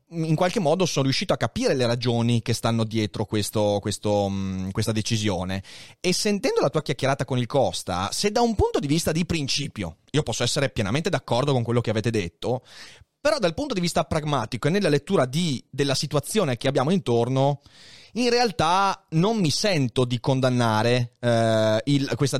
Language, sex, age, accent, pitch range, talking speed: Italian, male, 30-49, native, 115-160 Hz, 170 wpm